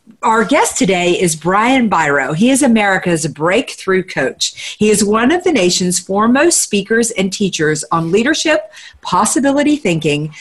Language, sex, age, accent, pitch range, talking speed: English, female, 50-69, American, 160-210 Hz, 145 wpm